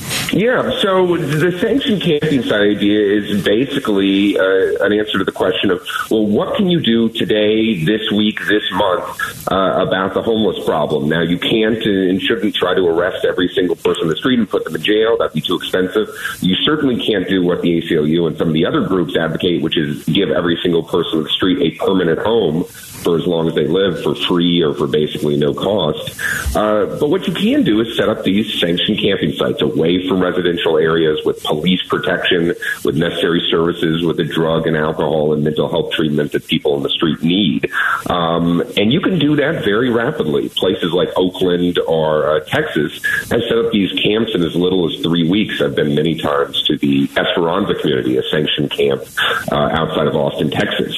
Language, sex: English, male